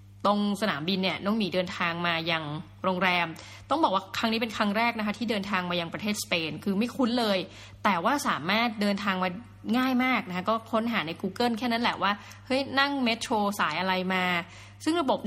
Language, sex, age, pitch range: Thai, female, 20-39, 175-230 Hz